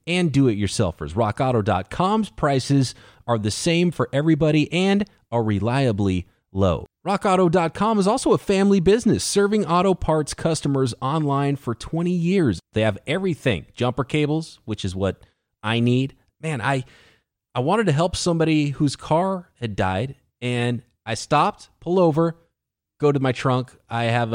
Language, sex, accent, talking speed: English, male, American, 145 wpm